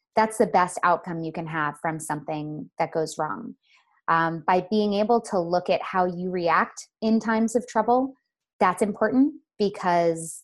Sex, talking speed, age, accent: female, 165 wpm, 20-39, American